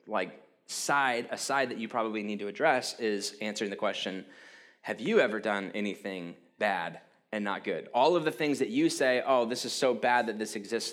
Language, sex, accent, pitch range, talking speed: English, male, American, 110-165 Hz, 210 wpm